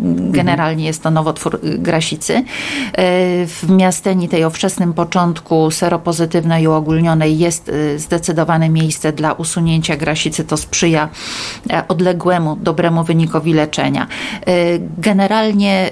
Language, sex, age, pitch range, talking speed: Polish, female, 40-59, 155-175 Hz, 100 wpm